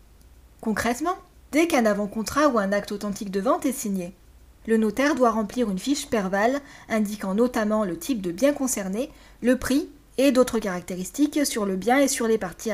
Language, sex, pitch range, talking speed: French, female, 210-275 Hz, 180 wpm